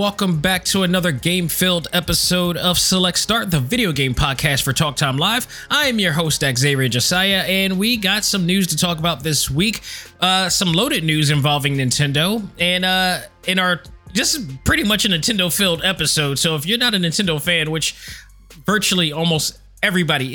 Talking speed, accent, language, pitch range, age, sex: 180 wpm, American, English, 145-185 Hz, 20-39, male